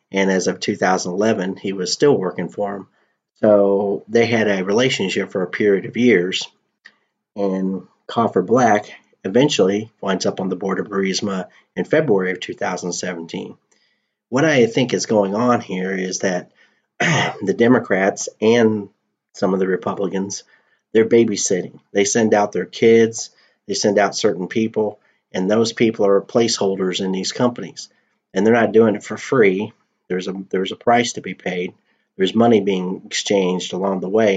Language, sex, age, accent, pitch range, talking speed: English, male, 40-59, American, 95-105 Hz, 160 wpm